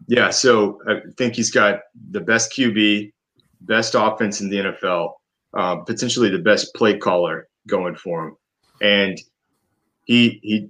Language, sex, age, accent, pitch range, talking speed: English, male, 30-49, American, 100-115 Hz, 145 wpm